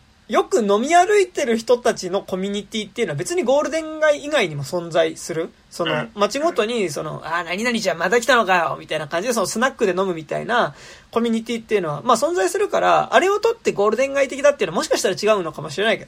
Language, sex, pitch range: Japanese, male, 190-290 Hz